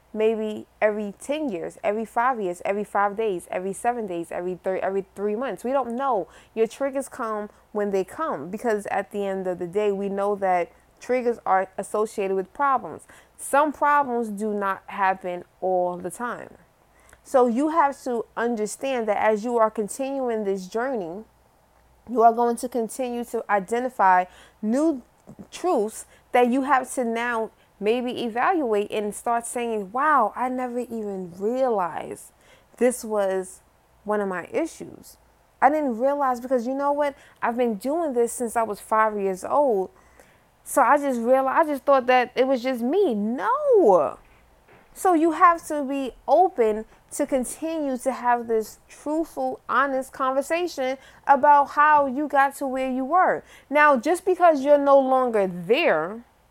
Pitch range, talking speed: 210-275 Hz, 160 wpm